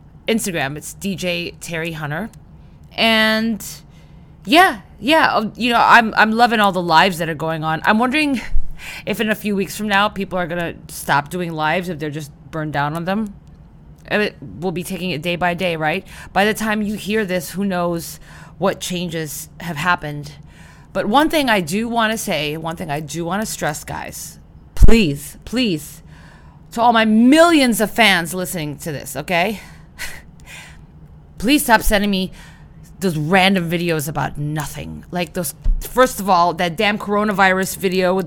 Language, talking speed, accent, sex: English, 170 wpm, American, female